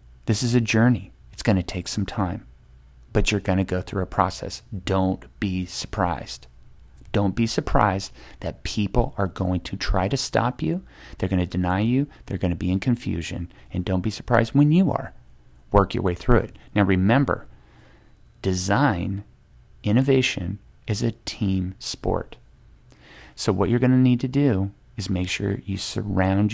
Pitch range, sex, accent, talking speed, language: 90-115 Hz, male, American, 175 wpm, English